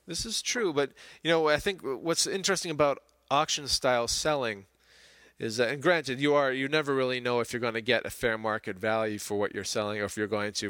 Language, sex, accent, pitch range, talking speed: English, male, American, 110-145 Hz, 230 wpm